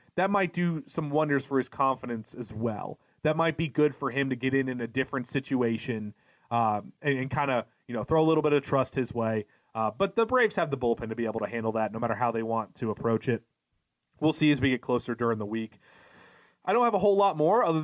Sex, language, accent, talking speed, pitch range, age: male, English, American, 255 wpm, 130-165 Hz, 30-49